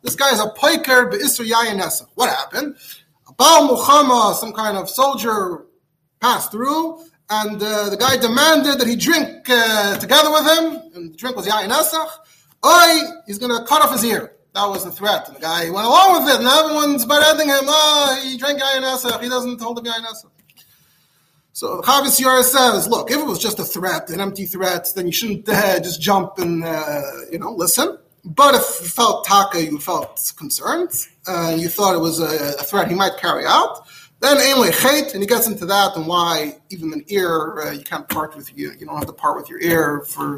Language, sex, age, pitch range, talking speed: English, male, 30-49, 190-280 Hz, 205 wpm